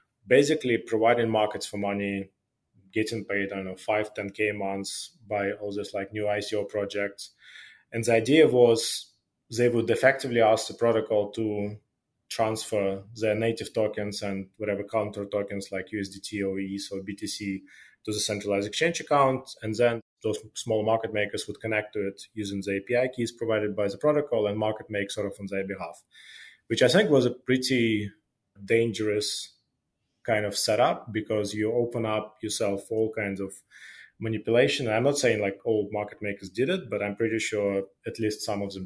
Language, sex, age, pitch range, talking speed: English, male, 20-39, 100-115 Hz, 180 wpm